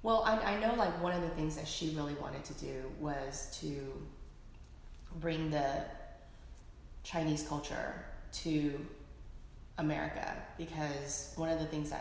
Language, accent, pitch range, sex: English, American, 140-160 Hz, female